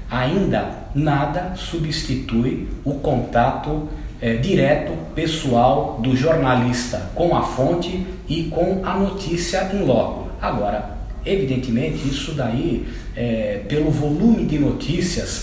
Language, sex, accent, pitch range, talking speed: Portuguese, male, Brazilian, 125-165 Hz, 100 wpm